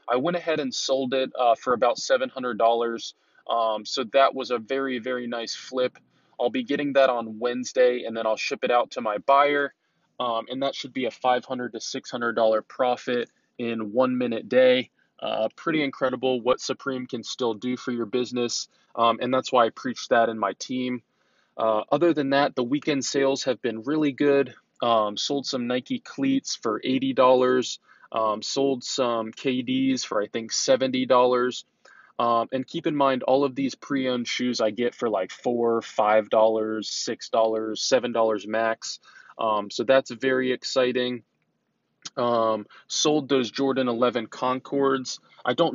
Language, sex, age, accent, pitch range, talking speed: English, male, 20-39, American, 115-135 Hz, 165 wpm